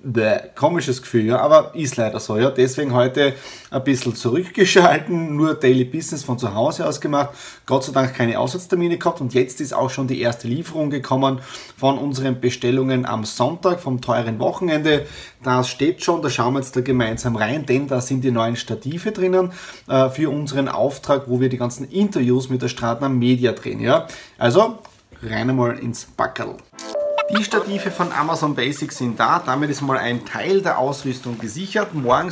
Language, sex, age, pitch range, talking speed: German, male, 30-49, 125-155 Hz, 180 wpm